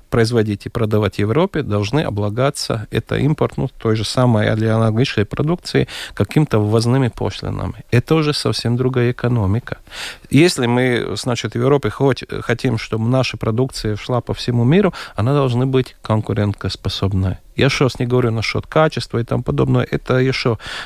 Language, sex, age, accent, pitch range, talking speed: Russian, male, 40-59, native, 110-140 Hz, 155 wpm